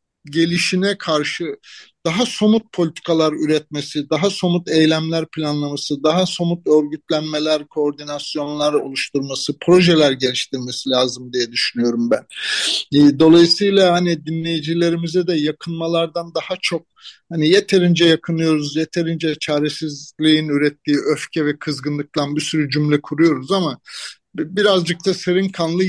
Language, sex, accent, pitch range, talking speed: Turkish, male, native, 150-180 Hz, 105 wpm